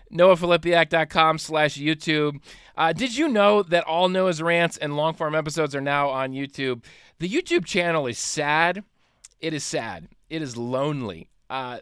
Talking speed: 150 wpm